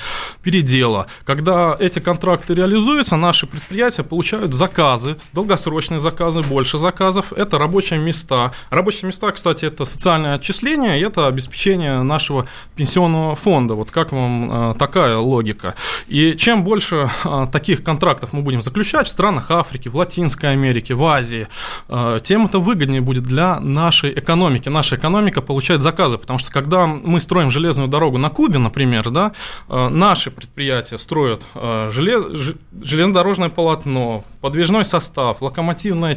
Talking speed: 140 wpm